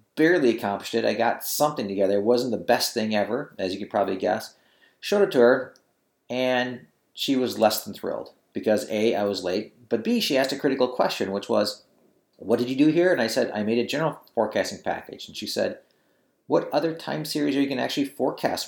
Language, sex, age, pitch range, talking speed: English, male, 40-59, 110-140 Hz, 220 wpm